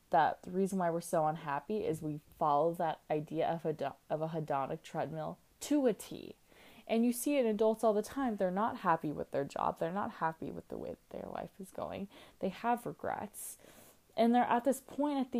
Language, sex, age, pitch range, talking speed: English, female, 20-39, 160-205 Hz, 220 wpm